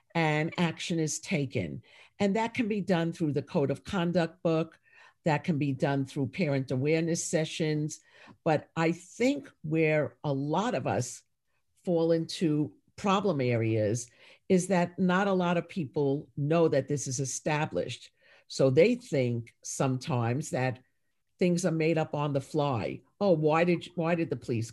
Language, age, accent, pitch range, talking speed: English, 50-69, American, 140-175 Hz, 160 wpm